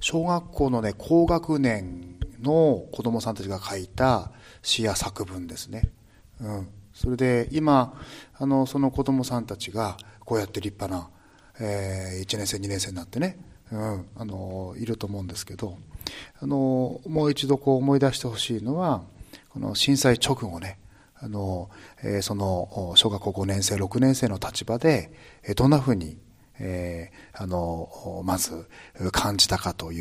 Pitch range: 100-140 Hz